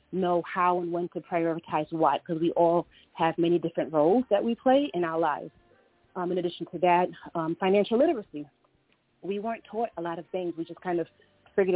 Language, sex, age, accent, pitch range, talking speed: English, female, 30-49, American, 165-190 Hz, 205 wpm